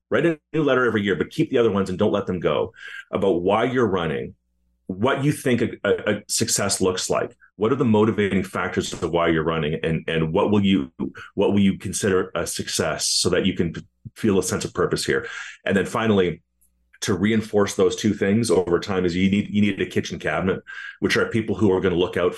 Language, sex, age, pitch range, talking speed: English, male, 30-49, 90-110 Hz, 230 wpm